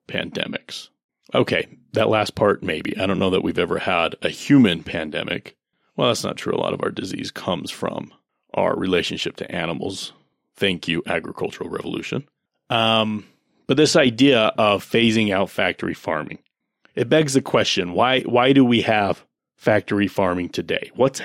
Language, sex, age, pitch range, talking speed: English, male, 30-49, 95-120 Hz, 160 wpm